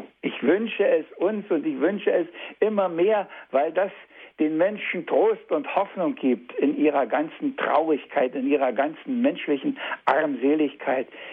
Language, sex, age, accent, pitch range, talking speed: German, male, 60-79, German, 135-215 Hz, 145 wpm